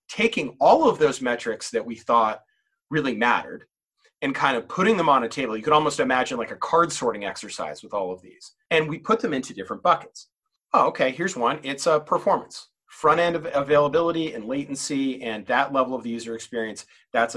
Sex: male